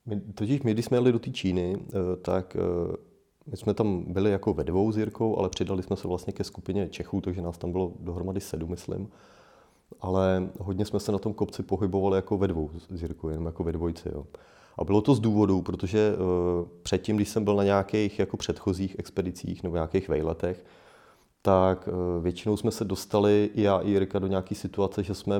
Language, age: Czech, 30-49